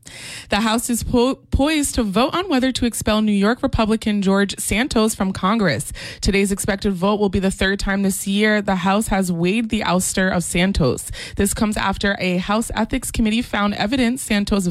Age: 20-39